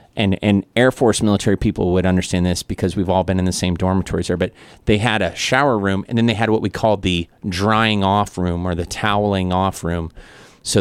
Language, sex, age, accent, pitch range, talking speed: English, male, 30-49, American, 95-110 Hz, 230 wpm